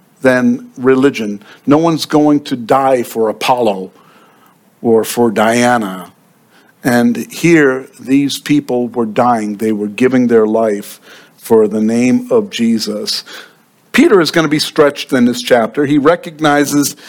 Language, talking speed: English, 135 wpm